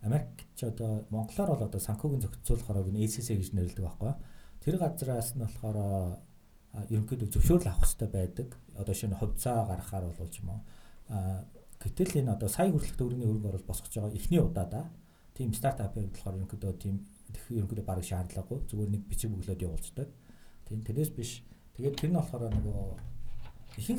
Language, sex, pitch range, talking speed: English, male, 95-120 Hz, 55 wpm